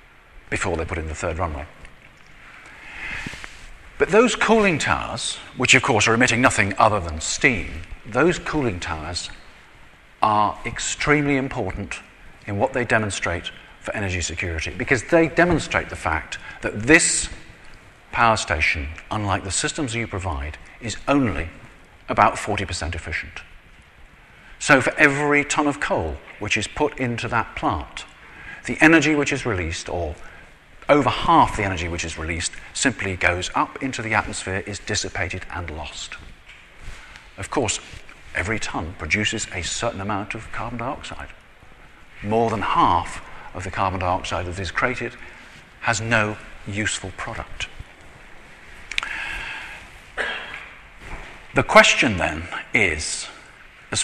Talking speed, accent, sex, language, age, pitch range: 130 wpm, British, male, English, 50-69, 90-125 Hz